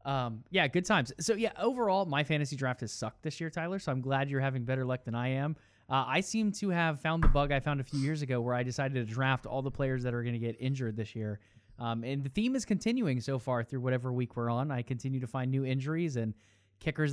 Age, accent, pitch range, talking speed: 20-39, American, 120-150 Hz, 265 wpm